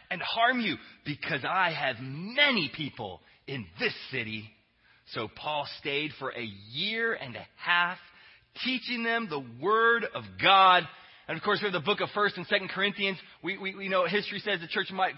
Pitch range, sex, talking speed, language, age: 135-195 Hz, male, 185 wpm, English, 20-39